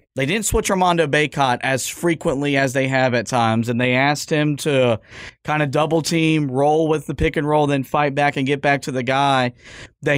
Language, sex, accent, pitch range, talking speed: English, male, American, 130-160 Hz, 200 wpm